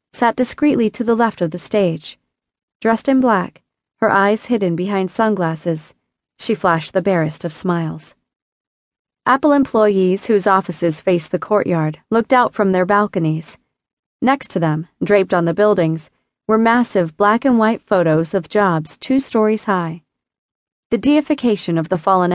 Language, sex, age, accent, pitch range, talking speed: English, female, 30-49, American, 175-225 Hz, 150 wpm